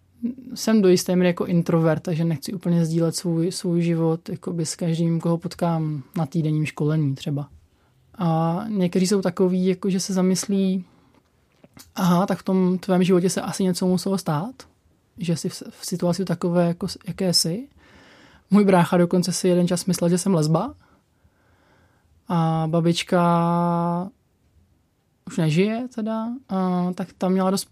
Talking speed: 150 wpm